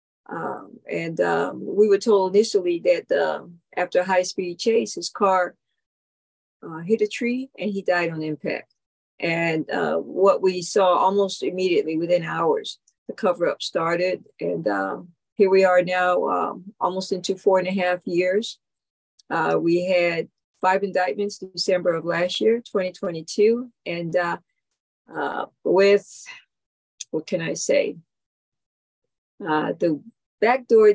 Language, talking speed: English, 145 wpm